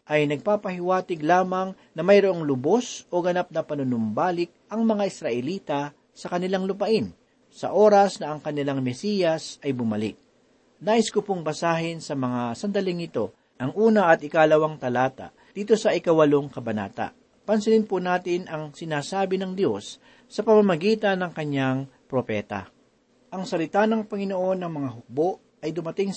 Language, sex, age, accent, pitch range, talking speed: Filipino, male, 40-59, native, 145-200 Hz, 140 wpm